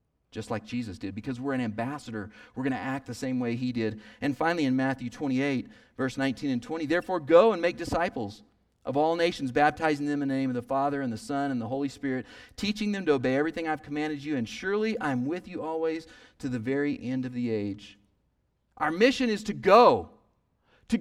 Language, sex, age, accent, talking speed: English, male, 40-59, American, 215 wpm